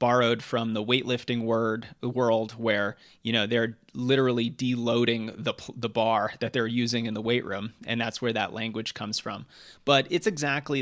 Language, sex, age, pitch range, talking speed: English, male, 30-49, 115-135 Hz, 175 wpm